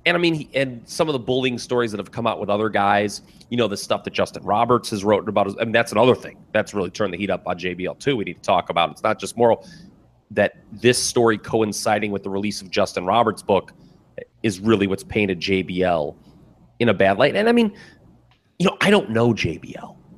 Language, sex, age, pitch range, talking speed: English, male, 30-49, 100-125 Hz, 240 wpm